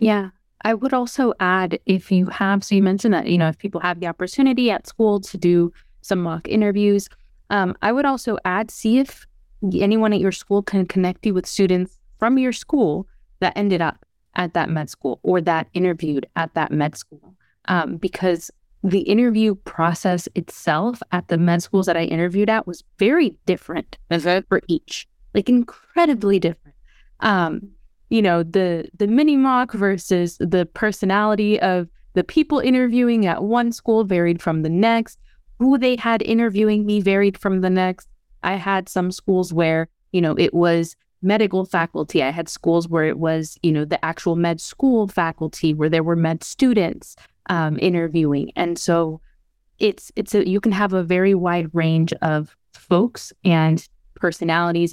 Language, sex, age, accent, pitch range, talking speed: English, female, 20-39, American, 170-215 Hz, 170 wpm